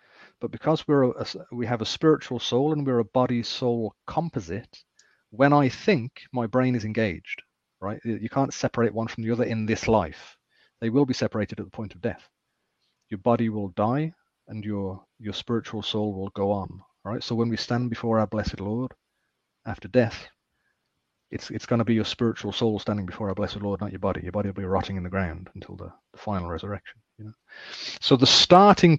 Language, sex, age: English, male, 30-49